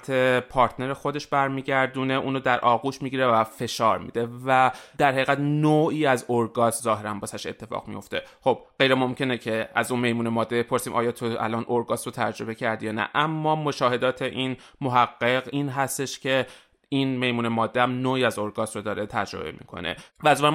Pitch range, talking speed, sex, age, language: 115-130 Hz, 165 wpm, male, 30-49, Persian